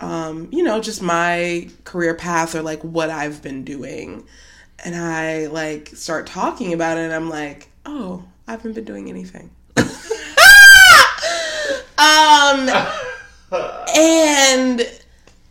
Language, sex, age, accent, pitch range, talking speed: English, female, 20-39, American, 160-200 Hz, 120 wpm